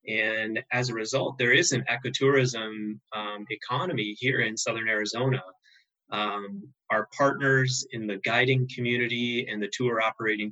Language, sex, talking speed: English, male, 145 wpm